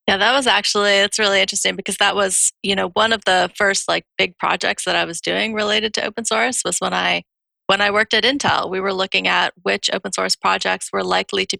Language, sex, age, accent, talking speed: English, female, 30-49, American, 240 wpm